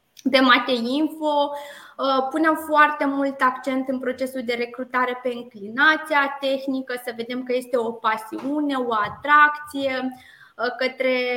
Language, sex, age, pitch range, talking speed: Romanian, female, 20-39, 245-280 Hz, 120 wpm